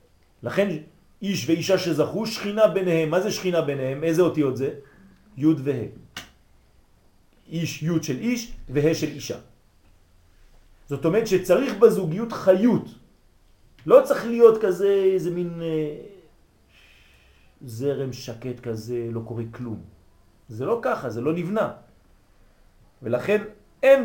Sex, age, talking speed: male, 40-59, 90 wpm